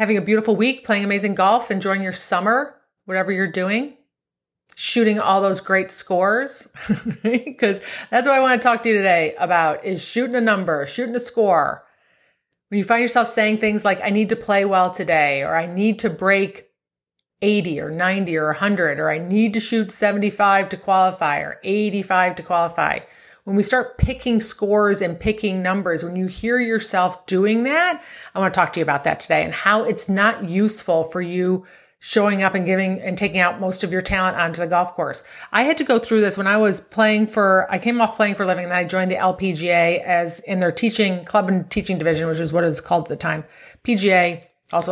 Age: 30-49